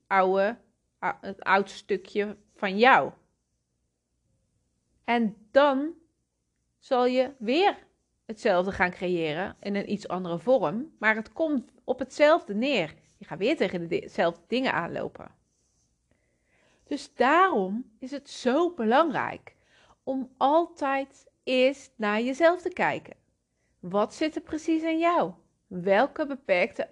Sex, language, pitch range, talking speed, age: female, Dutch, 170-260 Hz, 120 wpm, 30-49